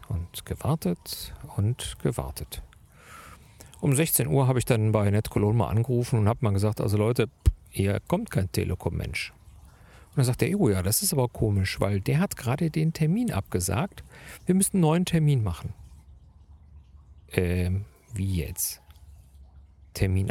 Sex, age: male, 50-69